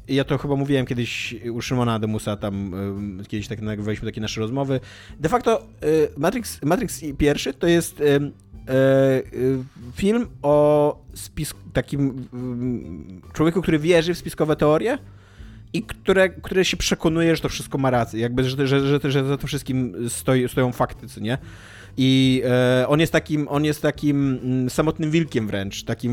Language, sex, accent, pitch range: Polish, male, native, 115-140 Hz